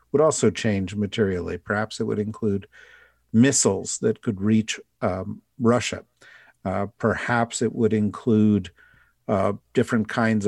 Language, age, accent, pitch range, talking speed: English, 50-69, American, 100-115 Hz, 125 wpm